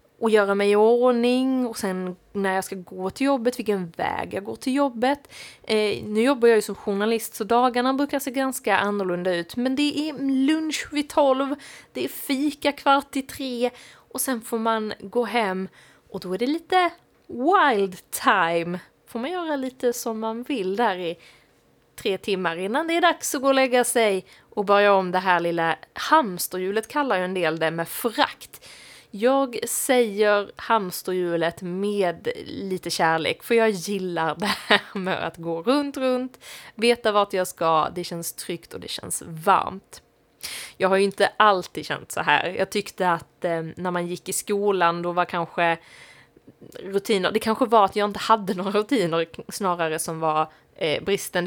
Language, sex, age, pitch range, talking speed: Swedish, female, 20-39, 180-250 Hz, 175 wpm